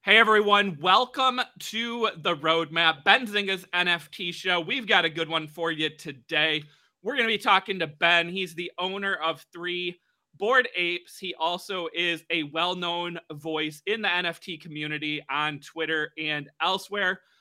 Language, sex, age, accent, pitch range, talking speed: English, male, 30-49, American, 160-195 Hz, 150 wpm